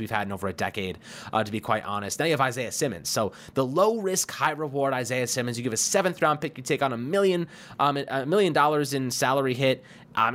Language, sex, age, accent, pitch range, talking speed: English, male, 20-39, American, 115-155 Hz, 250 wpm